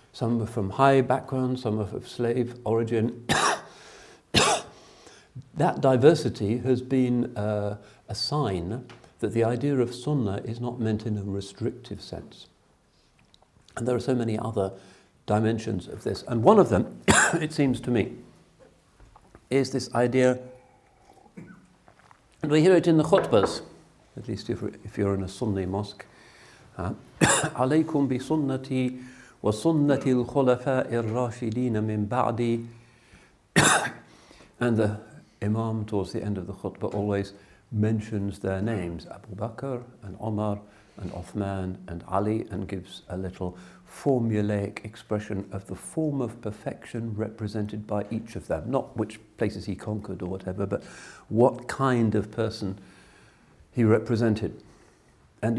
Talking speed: 135 wpm